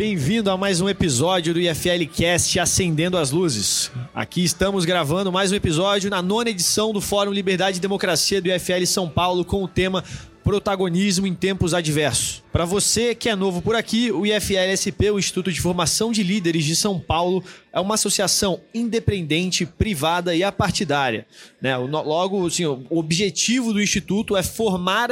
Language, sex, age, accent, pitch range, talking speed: Portuguese, male, 20-39, Brazilian, 165-200 Hz, 165 wpm